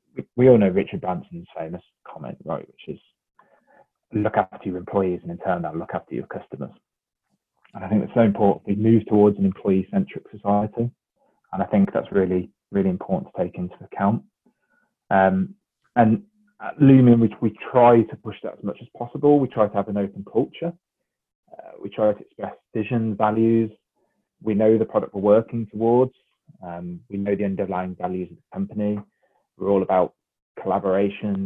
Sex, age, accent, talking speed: male, 20-39, British, 175 wpm